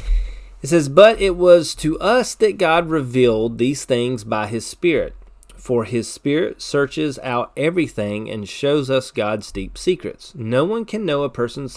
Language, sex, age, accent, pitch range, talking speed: English, male, 30-49, American, 110-155 Hz, 170 wpm